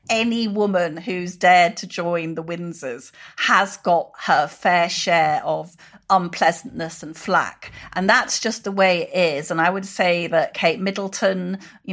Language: English